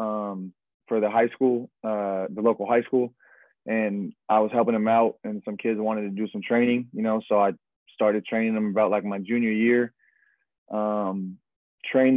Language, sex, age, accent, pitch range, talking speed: English, male, 20-39, American, 105-120 Hz, 185 wpm